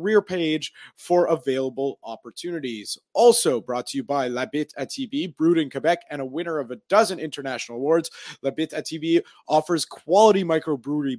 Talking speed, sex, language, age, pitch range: 165 wpm, male, English, 30-49, 140-175 Hz